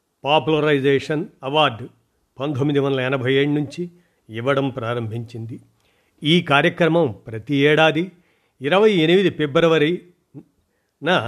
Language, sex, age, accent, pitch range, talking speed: Telugu, male, 50-69, native, 135-170 Hz, 85 wpm